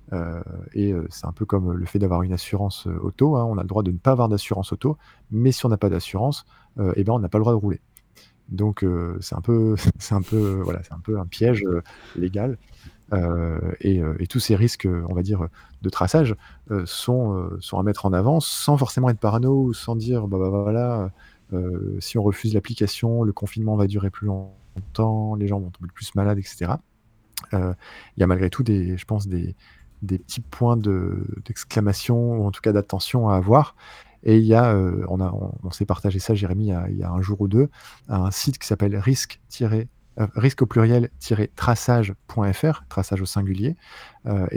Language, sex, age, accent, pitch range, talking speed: French, male, 20-39, French, 95-115 Hz, 200 wpm